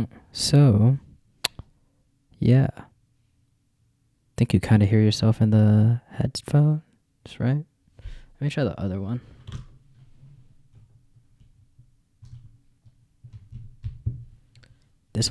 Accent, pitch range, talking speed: American, 105-130 Hz, 80 wpm